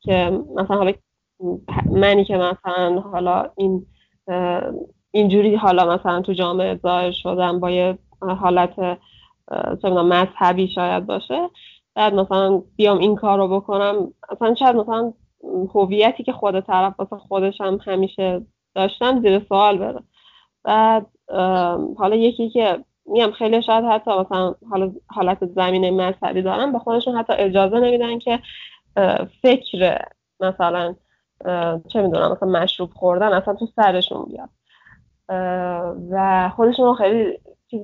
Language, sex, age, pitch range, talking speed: Persian, female, 10-29, 185-225 Hz, 120 wpm